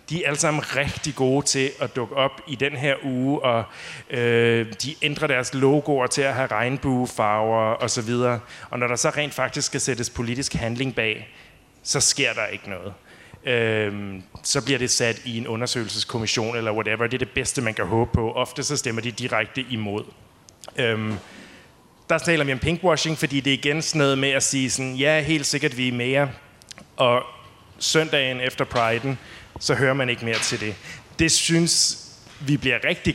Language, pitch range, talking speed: Danish, 115-140 Hz, 185 wpm